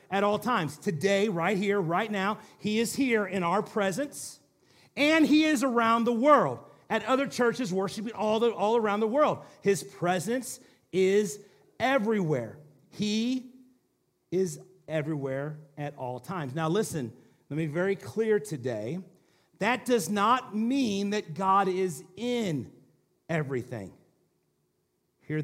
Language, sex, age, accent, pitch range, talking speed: English, male, 40-59, American, 175-230 Hz, 135 wpm